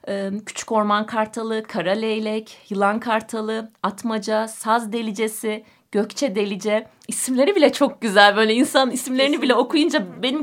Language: Turkish